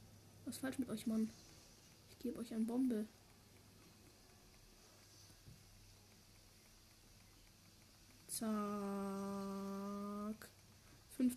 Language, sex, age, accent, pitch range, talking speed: German, female, 20-39, German, 195-250 Hz, 65 wpm